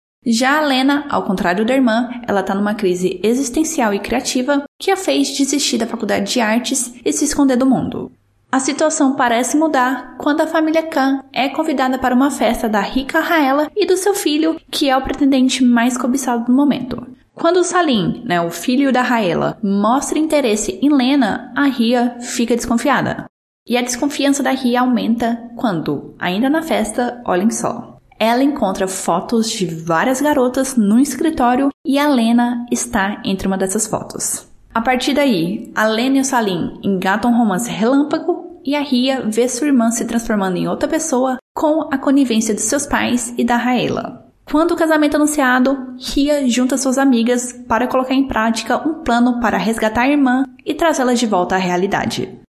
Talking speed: 180 wpm